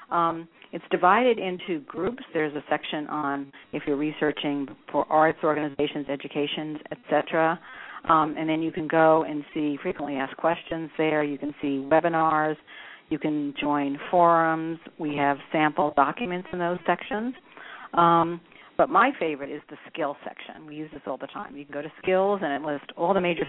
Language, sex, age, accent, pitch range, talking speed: English, female, 50-69, American, 145-165 Hz, 180 wpm